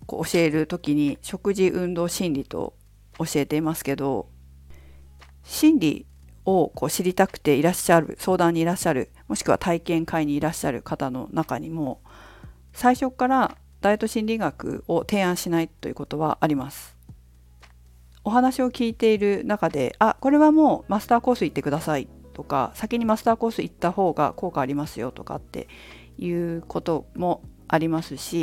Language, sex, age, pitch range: Japanese, female, 50-69, 145-220 Hz